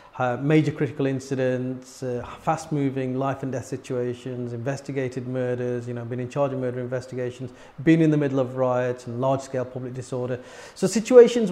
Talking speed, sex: 155 wpm, male